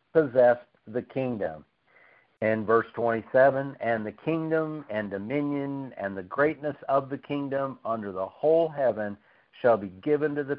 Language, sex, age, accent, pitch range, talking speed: English, male, 60-79, American, 110-140 Hz, 140 wpm